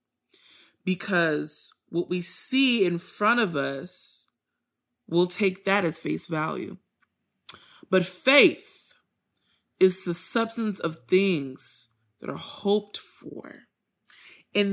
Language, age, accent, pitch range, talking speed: English, 30-49, American, 180-255 Hz, 105 wpm